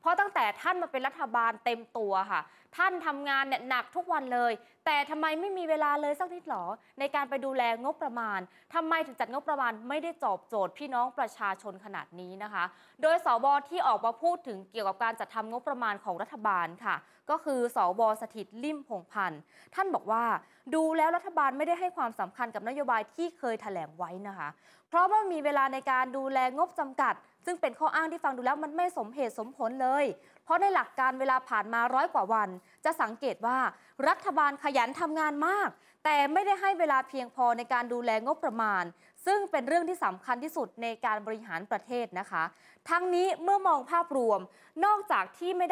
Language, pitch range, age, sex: Thai, 225-325 Hz, 20-39, female